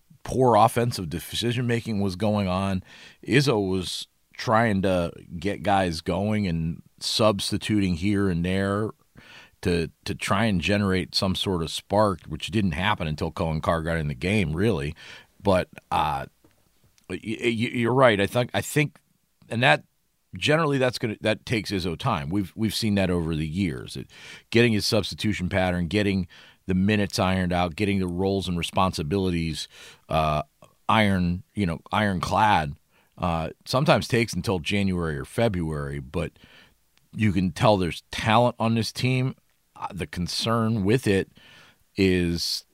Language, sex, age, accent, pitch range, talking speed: English, male, 40-59, American, 90-110 Hz, 145 wpm